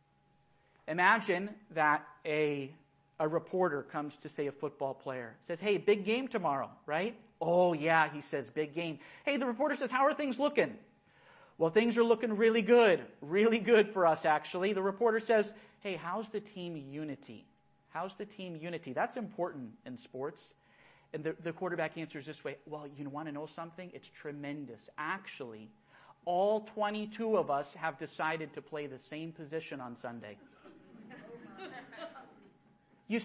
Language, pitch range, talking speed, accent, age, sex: English, 160-245 Hz, 160 wpm, American, 40-59, male